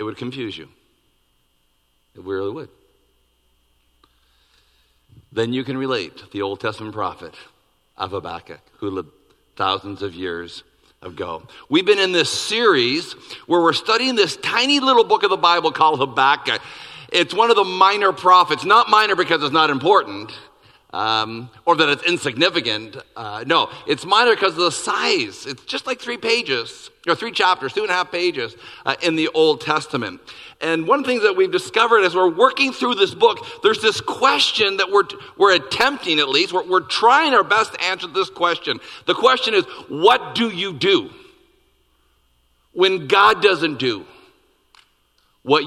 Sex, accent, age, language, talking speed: male, American, 50-69, English, 170 wpm